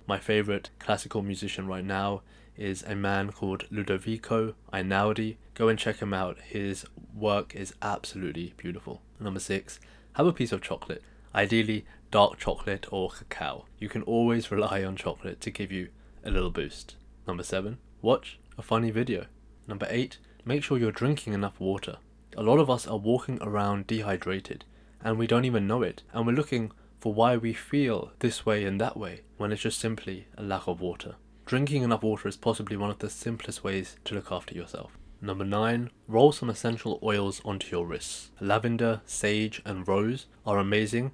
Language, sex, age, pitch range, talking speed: English, male, 20-39, 95-110 Hz, 180 wpm